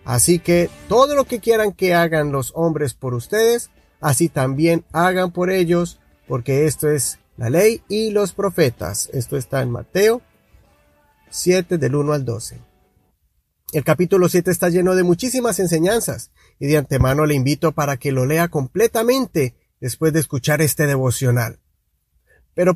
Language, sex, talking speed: Spanish, male, 155 wpm